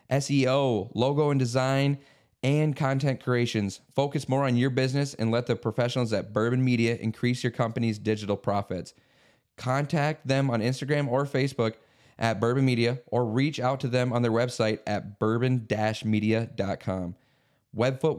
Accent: American